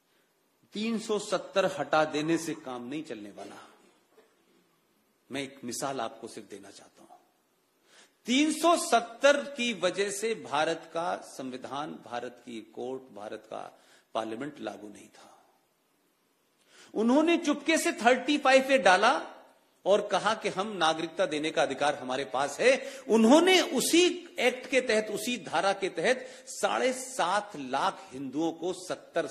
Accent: native